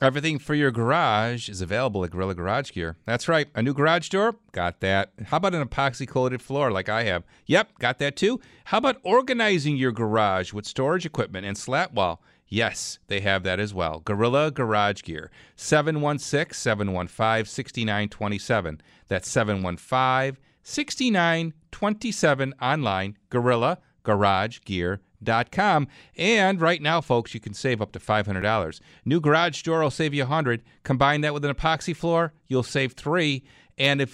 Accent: American